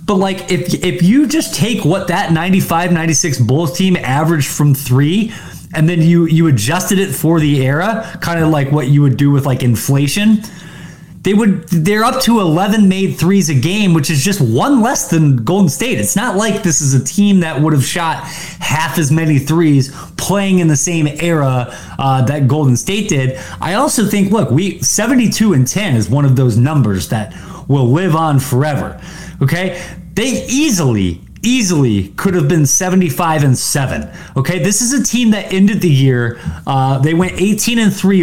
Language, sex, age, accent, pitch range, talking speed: English, male, 20-39, American, 140-195 Hz, 195 wpm